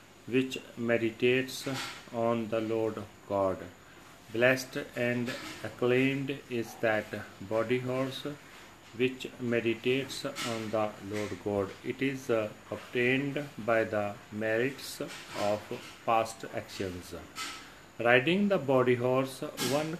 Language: Punjabi